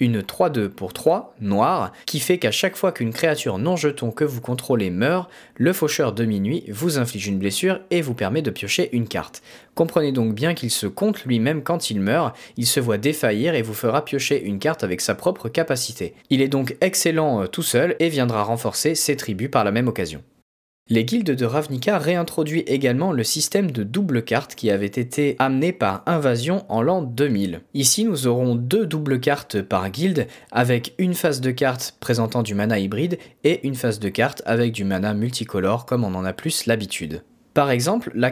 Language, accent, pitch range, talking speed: French, French, 110-155 Hz, 200 wpm